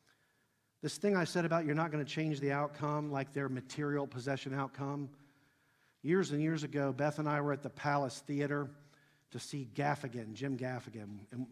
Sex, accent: male, American